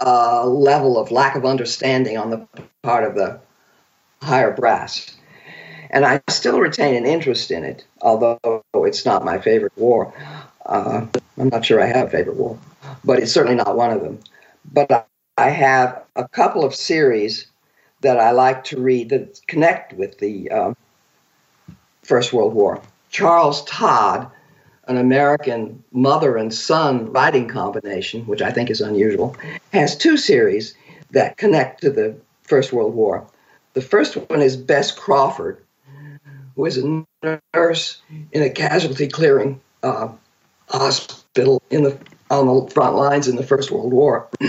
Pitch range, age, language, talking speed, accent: 130-205 Hz, 50-69, English, 155 wpm, American